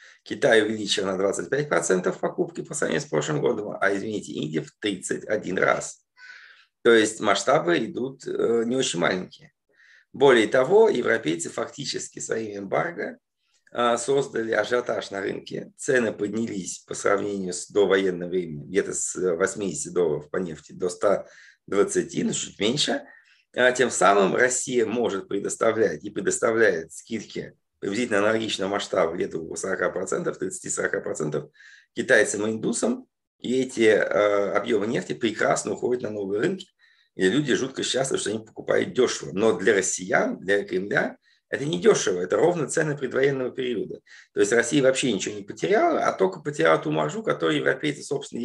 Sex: male